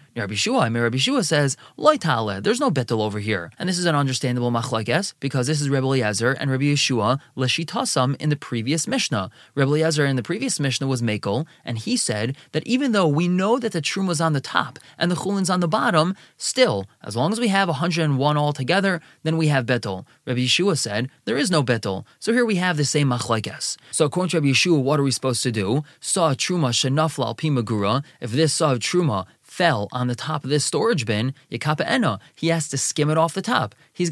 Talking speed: 205 wpm